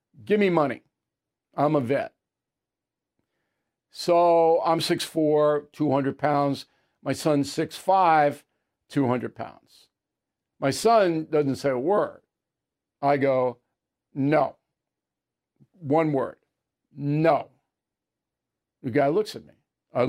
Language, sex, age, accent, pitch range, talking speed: English, male, 60-79, American, 135-165 Hz, 100 wpm